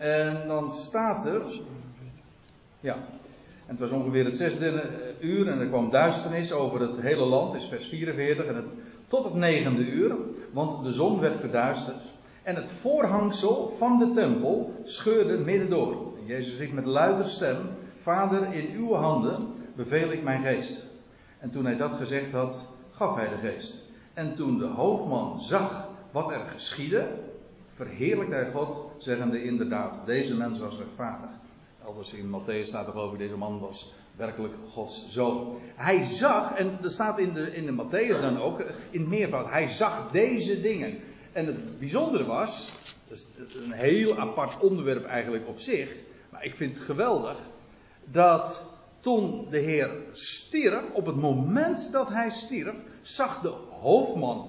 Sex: male